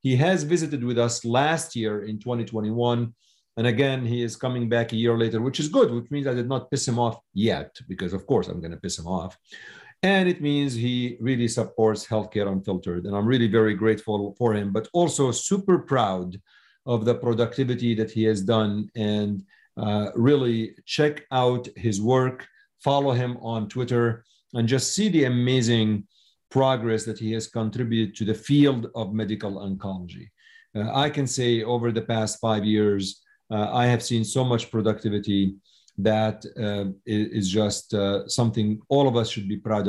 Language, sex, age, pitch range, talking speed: English, male, 50-69, 110-130 Hz, 180 wpm